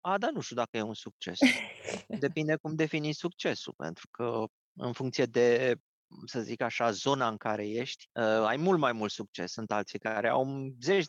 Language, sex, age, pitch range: Romanian, male, 30-49, 120-155 Hz